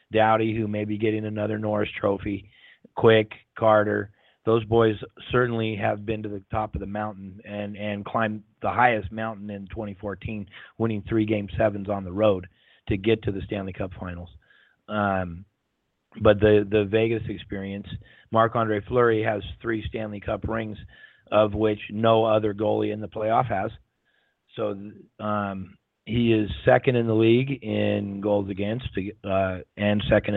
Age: 30-49